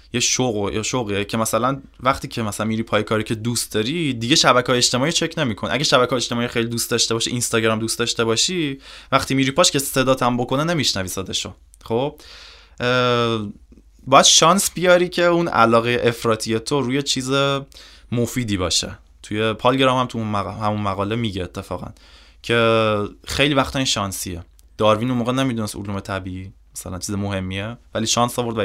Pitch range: 100-130 Hz